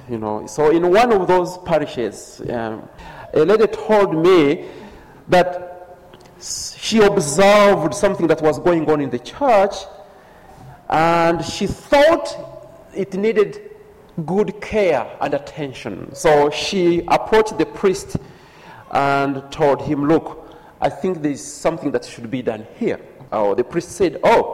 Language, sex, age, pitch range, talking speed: English, male, 40-59, 150-225 Hz, 135 wpm